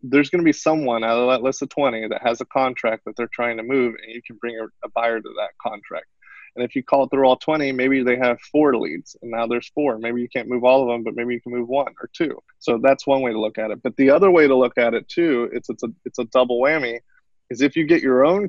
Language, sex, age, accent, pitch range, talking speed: English, male, 20-39, American, 115-135 Hz, 295 wpm